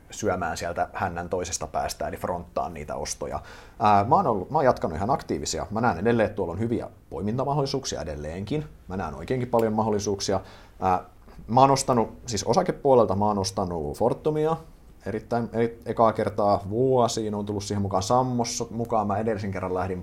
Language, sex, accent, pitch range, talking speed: Finnish, male, native, 95-115 Hz, 170 wpm